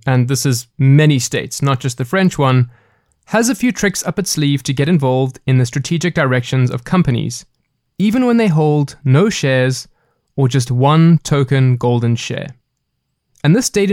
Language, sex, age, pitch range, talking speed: English, male, 20-39, 135-170 Hz, 175 wpm